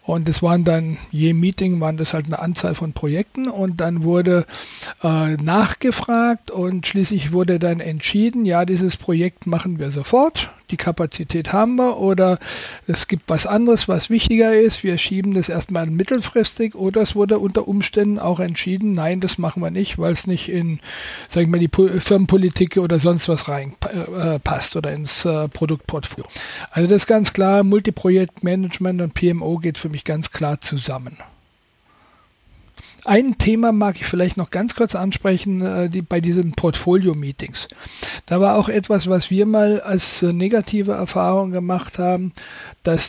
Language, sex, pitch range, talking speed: German, male, 170-200 Hz, 165 wpm